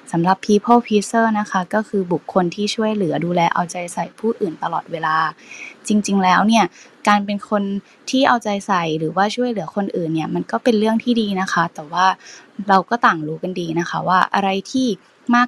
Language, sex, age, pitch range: Thai, female, 20-39, 180-220 Hz